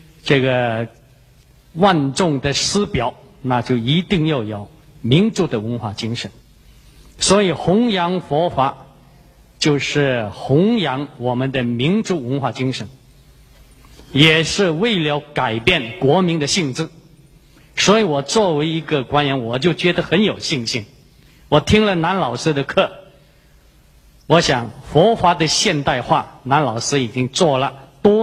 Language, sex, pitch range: Chinese, male, 125-160 Hz